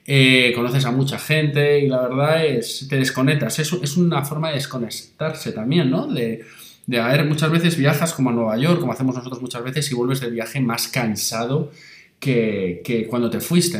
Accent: Spanish